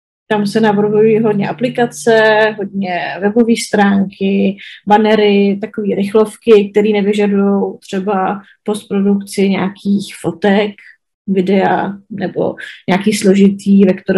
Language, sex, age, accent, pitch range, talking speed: Czech, female, 20-39, native, 200-220 Hz, 90 wpm